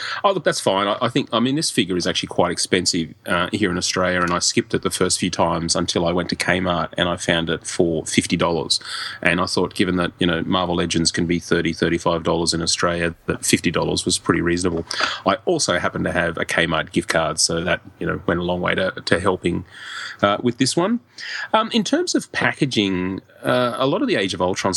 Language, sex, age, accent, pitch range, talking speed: English, male, 30-49, Australian, 85-100 Hz, 235 wpm